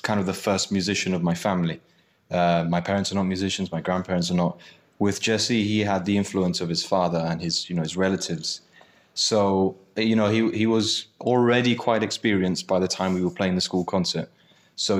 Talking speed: 210 wpm